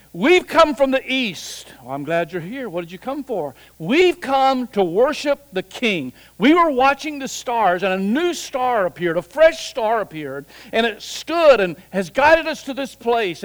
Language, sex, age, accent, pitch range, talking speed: English, male, 60-79, American, 165-240 Hz, 195 wpm